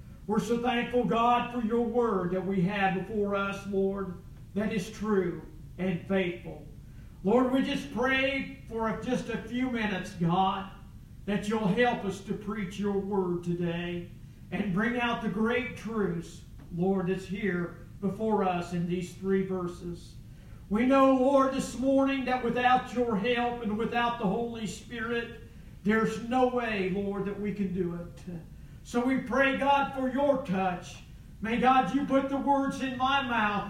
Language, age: English, 50-69